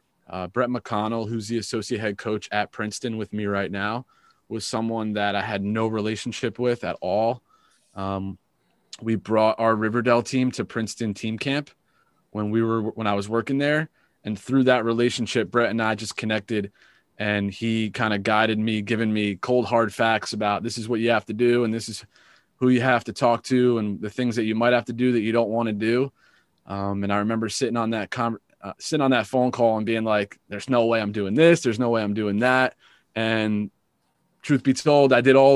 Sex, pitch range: male, 105-120 Hz